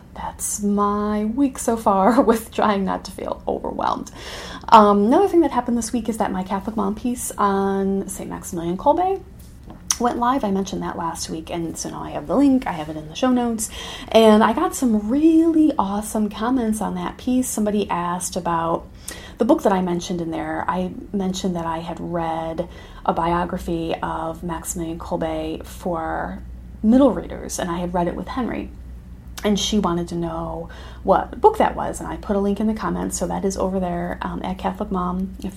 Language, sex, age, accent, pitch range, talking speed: English, female, 30-49, American, 175-220 Hz, 195 wpm